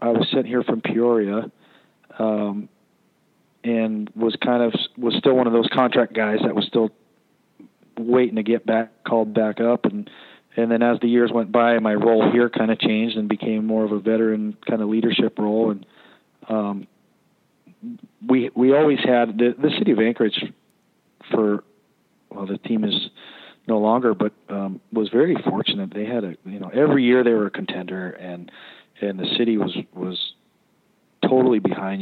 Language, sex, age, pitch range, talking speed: English, male, 40-59, 100-120 Hz, 175 wpm